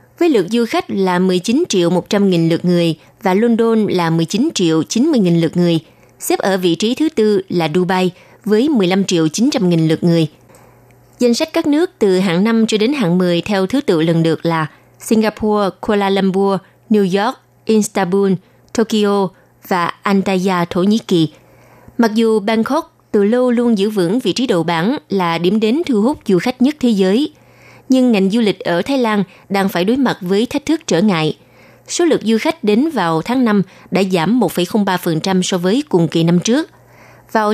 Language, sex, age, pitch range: Vietnamese, female, 20-39, 175-235 Hz